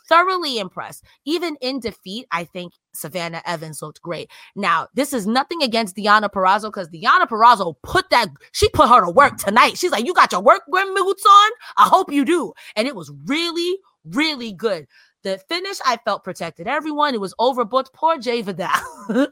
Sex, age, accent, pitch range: female, 30-49, American, 205-320 Hz